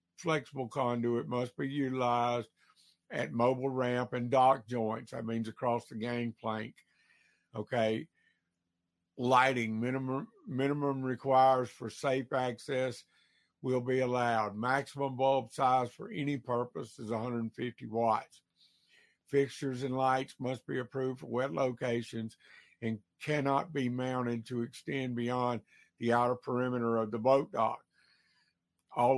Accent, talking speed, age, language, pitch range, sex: American, 125 wpm, 60-79, English, 115-130 Hz, male